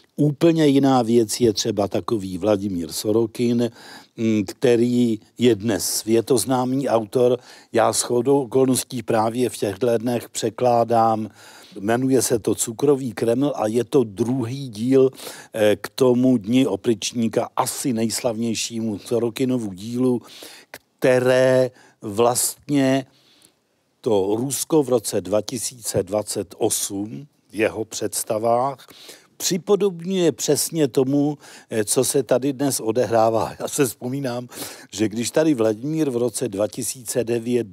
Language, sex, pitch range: Czech, male, 110-130 Hz